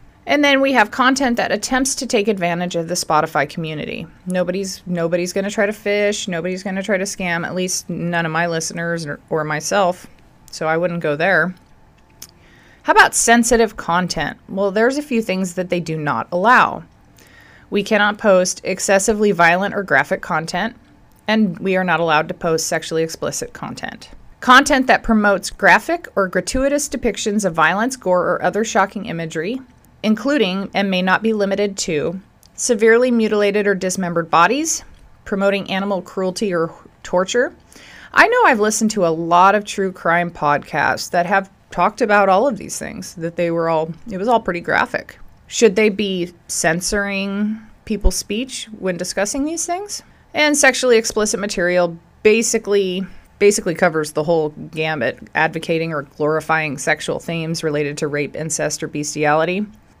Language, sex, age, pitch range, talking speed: English, female, 30-49, 170-215 Hz, 165 wpm